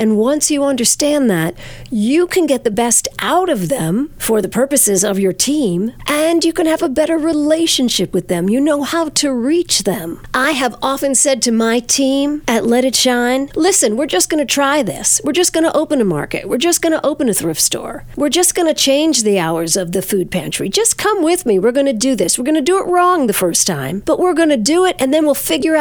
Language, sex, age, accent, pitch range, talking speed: English, female, 50-69, American, 225-315 Hz, 245 wpm